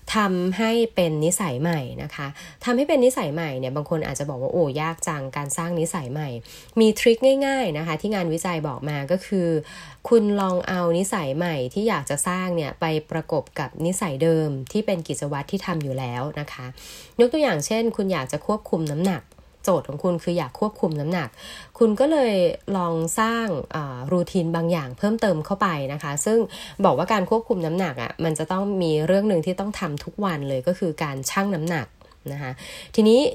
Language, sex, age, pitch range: Thai, female, 20-39, 150-195 Hz